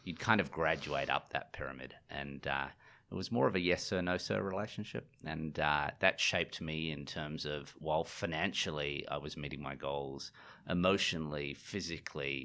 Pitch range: 70-80 Hz